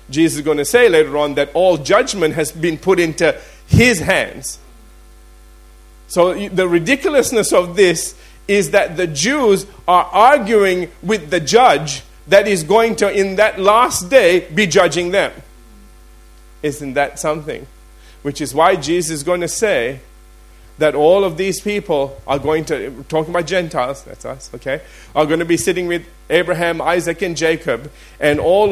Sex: male